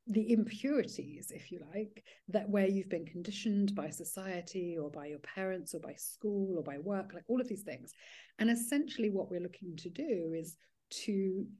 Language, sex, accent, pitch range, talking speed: English, female, British, 175-215 Hz, 185 wpm